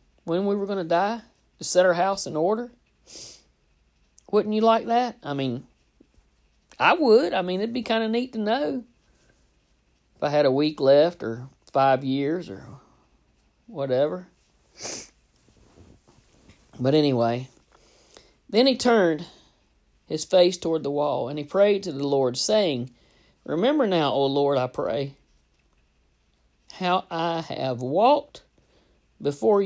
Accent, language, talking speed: American, English, 140 wpm